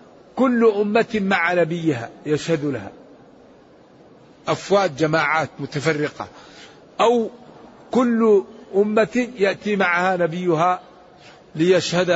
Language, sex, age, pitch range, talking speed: Arabic, male, 50-69, 165-210 Hz, 80 wpm